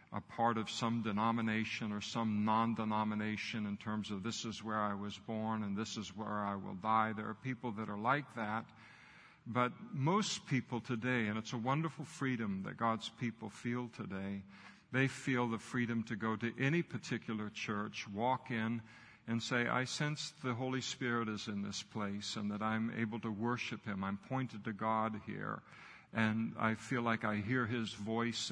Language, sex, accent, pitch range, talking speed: English, male, American, 110-130 Hz, 185 wpm